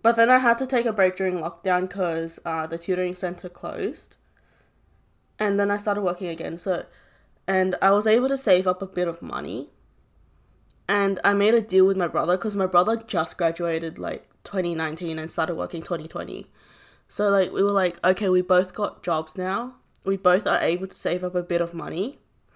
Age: 10-29